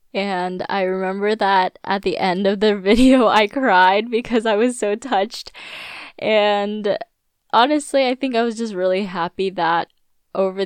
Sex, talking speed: female, 160 wpm